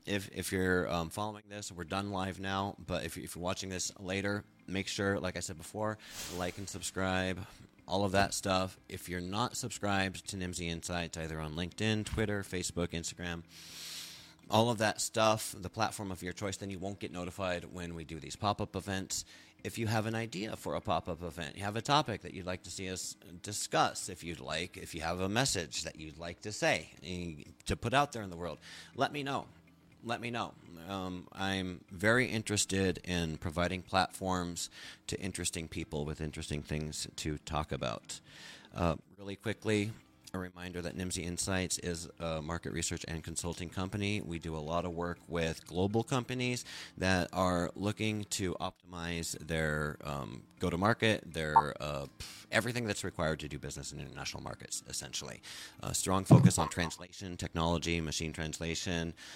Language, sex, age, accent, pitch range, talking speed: English, male, 30-49, American, 85-100 Hz, 180 wpm